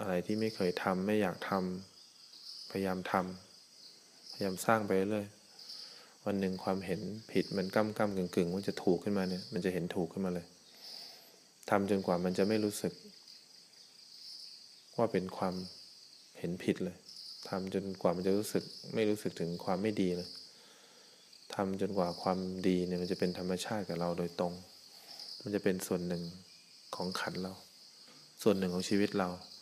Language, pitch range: English, 90-105 Hz